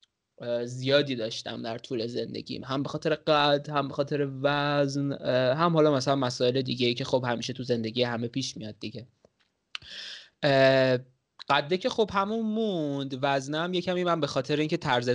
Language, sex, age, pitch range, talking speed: Persian, male, 20-39, 120-145 Hz, 160 wpm